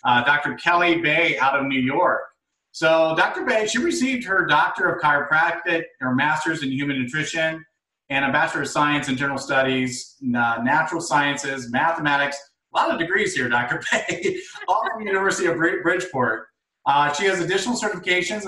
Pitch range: 130-165 Hz